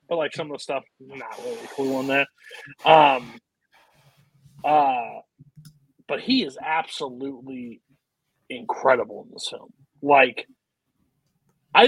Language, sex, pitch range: English, male, 135-155 Hz